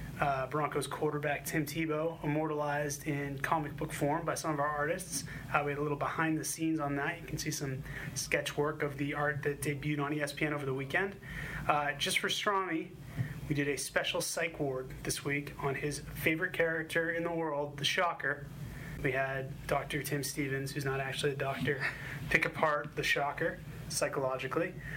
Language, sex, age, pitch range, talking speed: English, male, 30-49, 140-160 Hz, 185 wpm